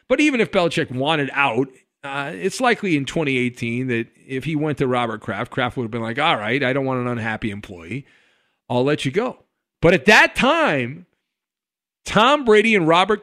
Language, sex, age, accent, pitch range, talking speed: English, male, 50-69, American, 140-205 Hz, 195 wpm